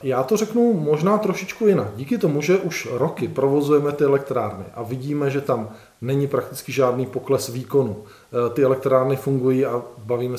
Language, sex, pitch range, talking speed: Czech, male, 120-135 Hz, 160 wpm